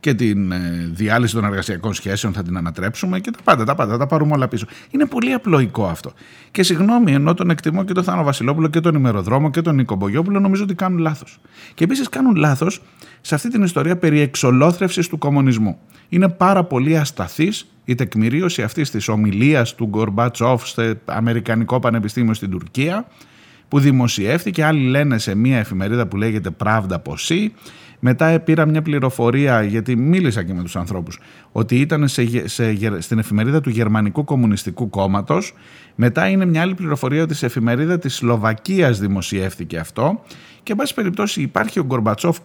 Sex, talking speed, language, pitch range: male, 170 wpm, Greek, 110-160 Hz